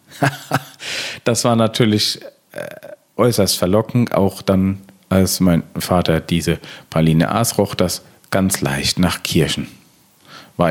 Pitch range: 80-100 Hz